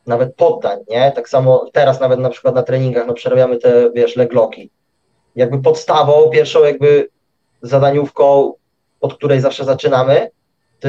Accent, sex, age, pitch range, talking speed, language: native, male, 20-39, 130-180 Hz, 145 wpm, Polish